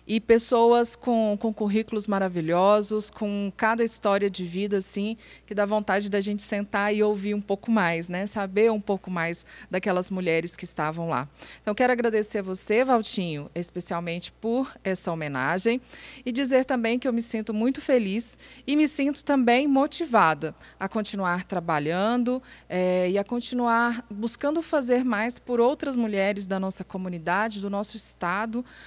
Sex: female